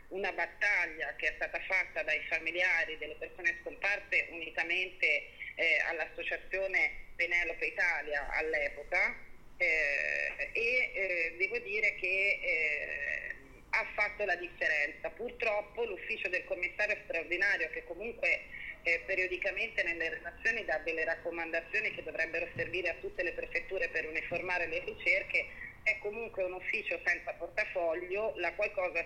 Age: 40-59